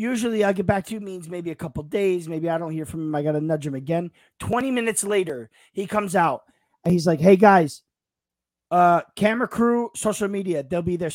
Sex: male